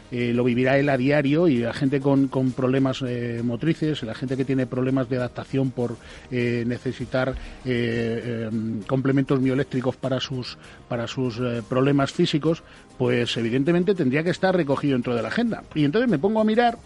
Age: 40-59